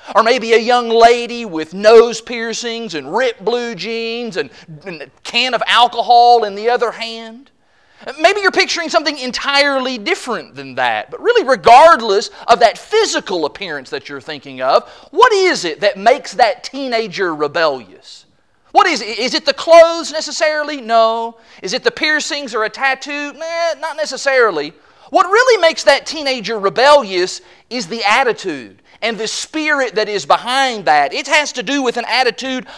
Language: English